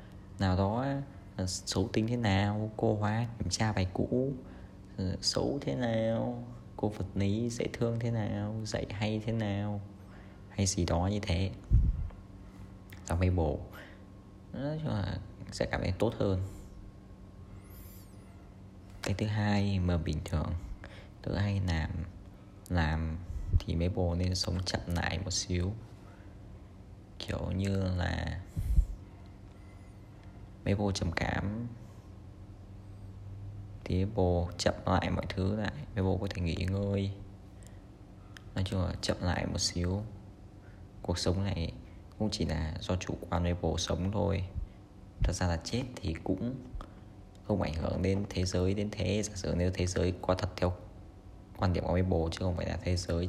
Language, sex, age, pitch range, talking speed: Vietnamese, male, 20-39, 90-100 Hz, 145 wpm